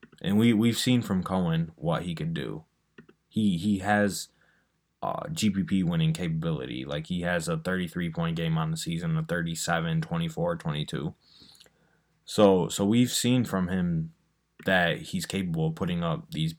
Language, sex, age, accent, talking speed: English, male, 20-39, American, 155 wpm